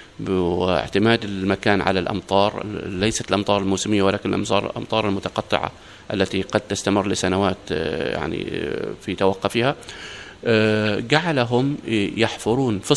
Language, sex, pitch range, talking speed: Arabic, male, 95-115 Hz, 95 wpm